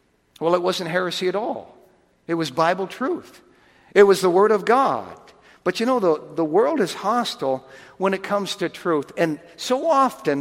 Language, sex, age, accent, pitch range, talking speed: English, male, 60-79, American, 145-200 Hz, 185 wpm